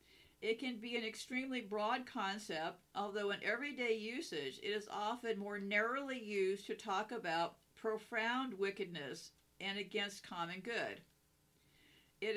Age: 50-69